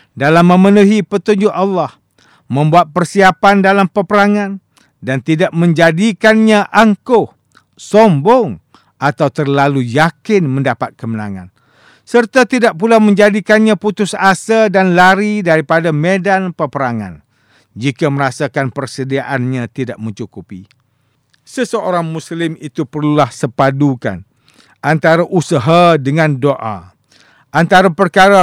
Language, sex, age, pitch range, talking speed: English, male, 50-69, 125-180 Hz, 95 wpm